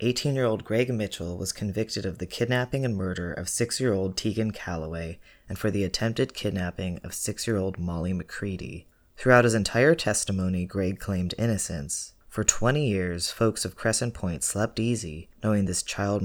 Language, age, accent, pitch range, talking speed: English, 30-49, American, 95-125 Hz, 155 wpm